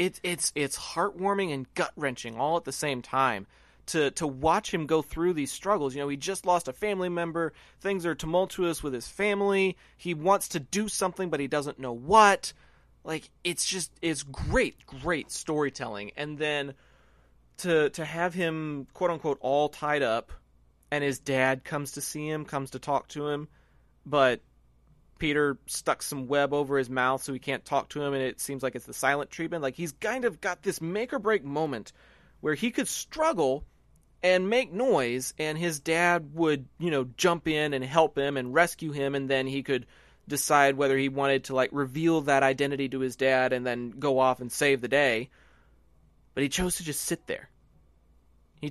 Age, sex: 30-49, male